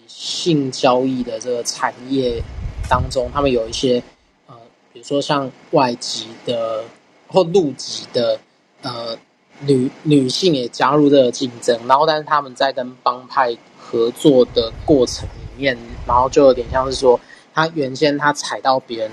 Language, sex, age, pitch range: Chinese, male, 20-39, 120-145 Hz